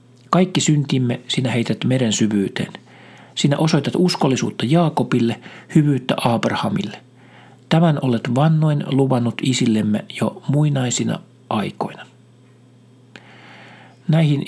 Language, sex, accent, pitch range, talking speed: Finnish, male, native, 115-135 Hz, 85 wpm